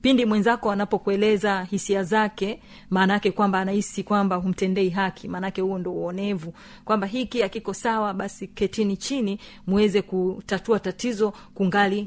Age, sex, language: 40-59, female, Swahili